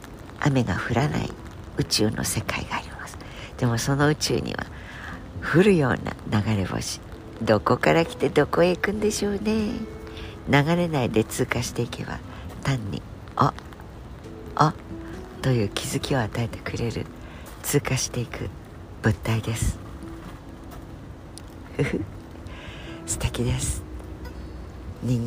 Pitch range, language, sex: 90-125 Hz, Japanese, female